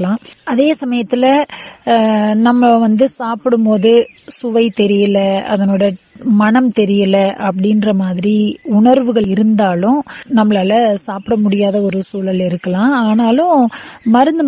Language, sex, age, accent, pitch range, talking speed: Tamil, female, 20-39, native, 195-245 Hz, 95 wpm